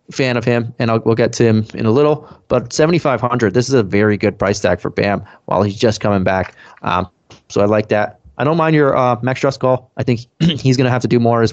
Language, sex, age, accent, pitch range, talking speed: English, male, 30-49, American, 110-130 Hz, 265 wpm